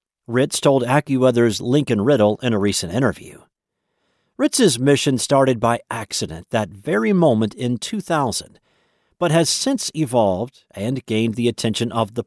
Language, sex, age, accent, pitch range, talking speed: English, male, 50-69, American, 115-170 Hz, 140 wpm